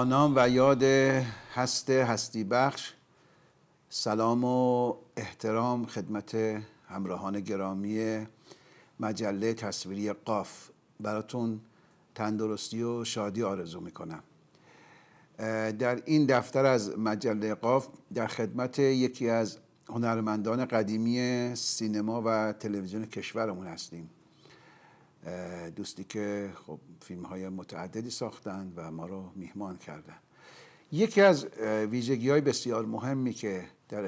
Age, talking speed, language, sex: 60-79, 100 wpm, Persian, male